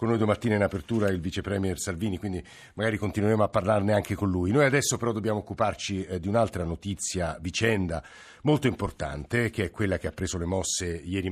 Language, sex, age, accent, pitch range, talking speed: Italian, male, 50-69, native, 95-115 Hz, 190 wpm